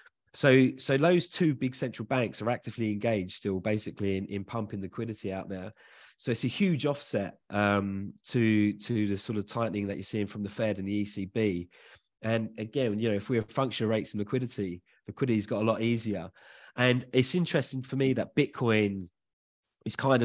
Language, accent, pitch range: English, British, 105-125 Hz